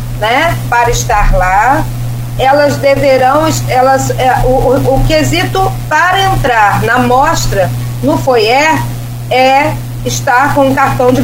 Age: 40-59